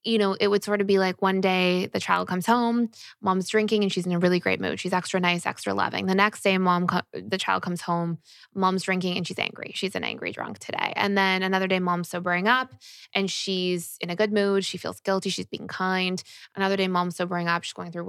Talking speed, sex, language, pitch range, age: 240 wpm, female, English, 180-210 Hz, 20-39